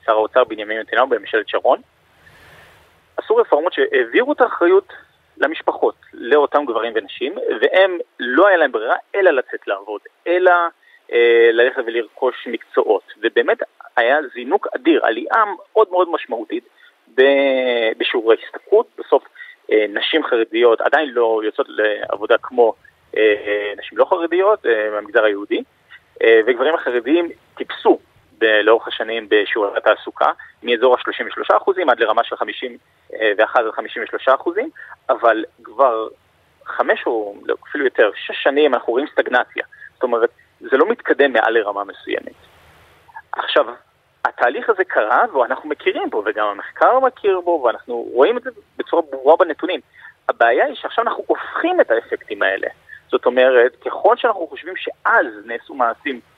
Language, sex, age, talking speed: Hebrew, male, 30-49, 135 wpm